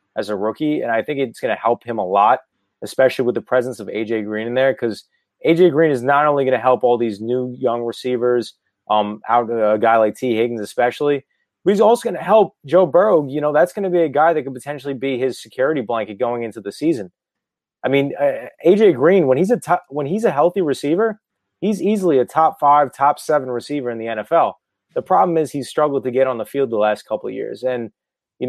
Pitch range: 120-150 Hz